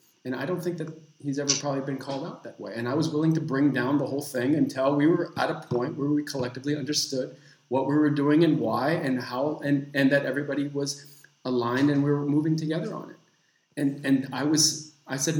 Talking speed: 235 wpm